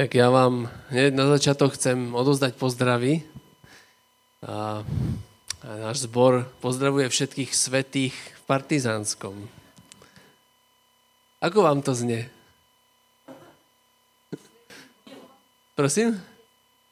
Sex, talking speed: male, 80 wpm